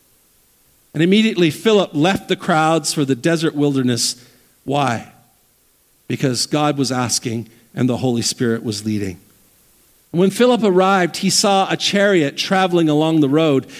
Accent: American